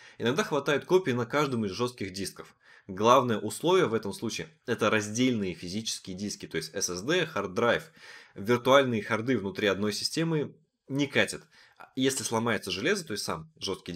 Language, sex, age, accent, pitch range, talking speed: Russian, male, 20-39, native, 95-130 Hz, 155 wpm